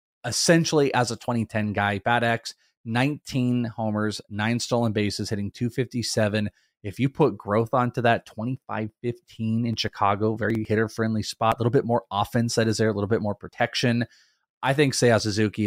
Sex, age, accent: male, 20-39, American